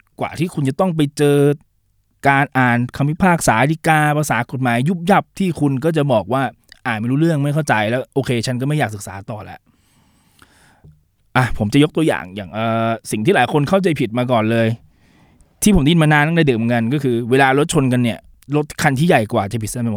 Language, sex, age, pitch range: Thai, male, 20-39, 115-155 Hz